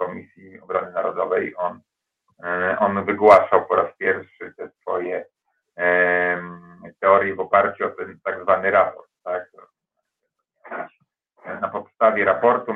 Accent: native